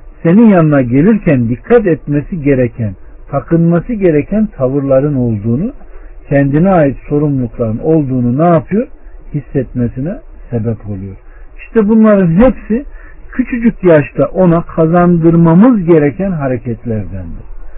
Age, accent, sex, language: 60-79, native, male, Turkish